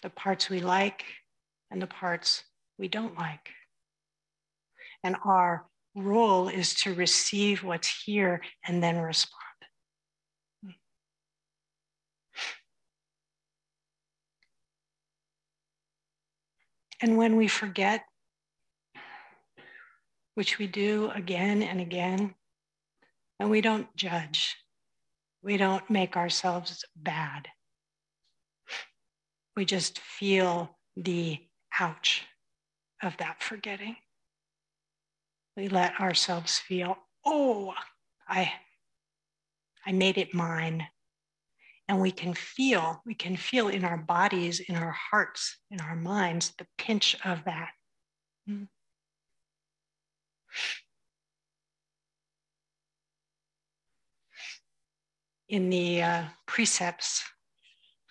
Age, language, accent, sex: 50-69, English, American, female